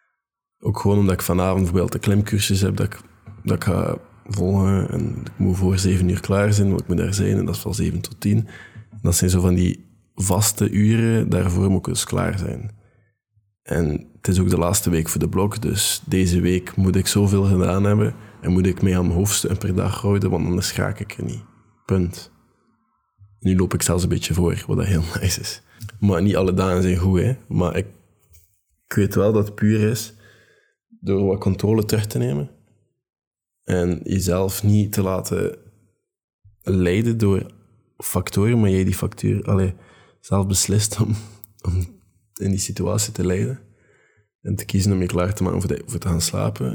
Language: Dutch